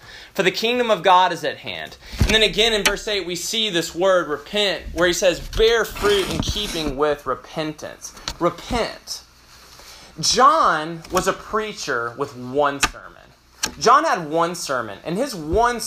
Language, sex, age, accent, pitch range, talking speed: English, male, 20-39, American, 140-210 Hz, 165 wpm